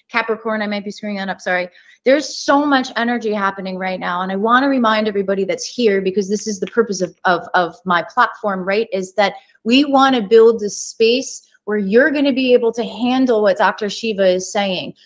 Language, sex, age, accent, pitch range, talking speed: English, female, 30-49, American, 215-285 Hz, 220 wpm